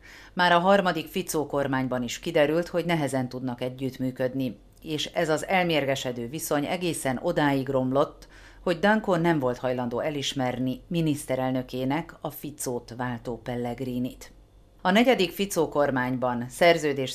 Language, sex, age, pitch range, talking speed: Hungarian, female, 40-59, 125-160 Hz, 120 wpm